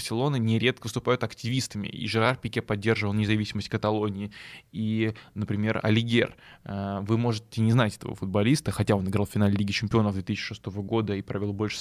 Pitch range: 105-120 Hz